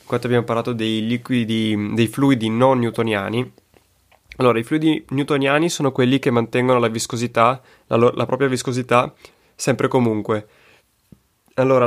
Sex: male